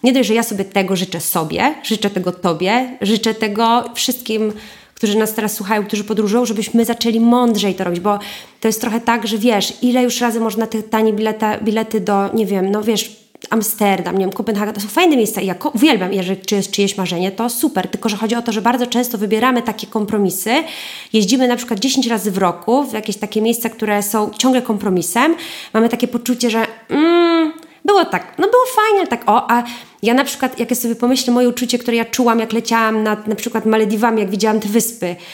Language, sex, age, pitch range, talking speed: Polish, female, 20-39, 210-245 Hz, 210 wpm